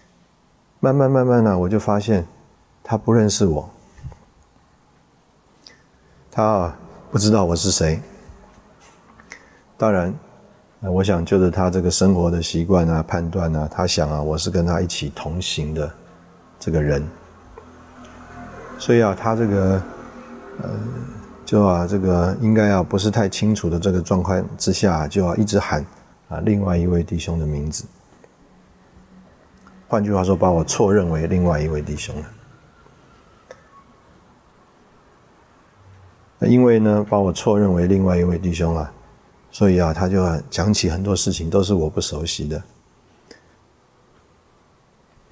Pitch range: 85-105 Hz